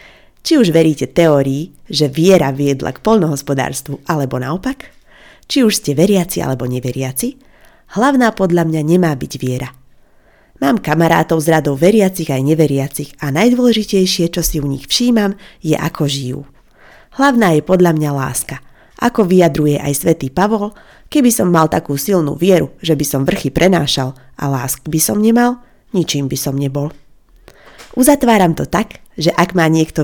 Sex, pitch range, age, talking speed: female, 145-195 Hz, 30-49, 155 wpm